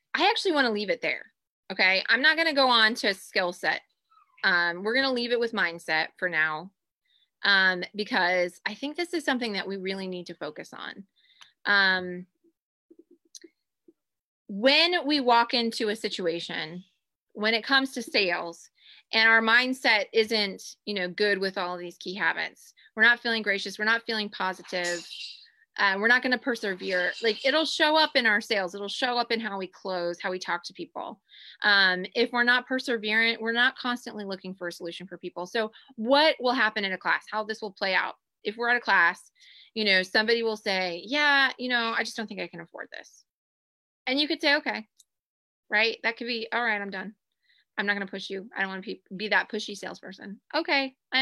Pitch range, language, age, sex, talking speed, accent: 190-250 Hz, English, 20-39, female, 205 wpm, American